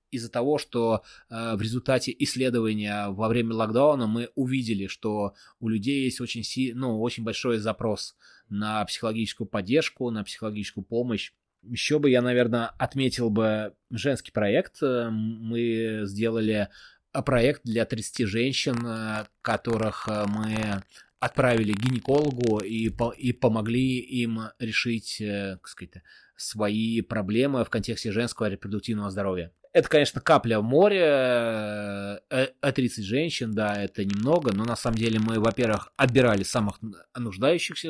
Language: Russian